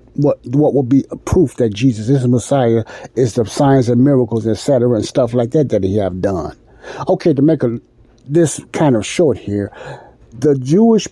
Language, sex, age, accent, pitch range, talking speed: English, male, 60-79, American, 115-145 Hz, 195 wpm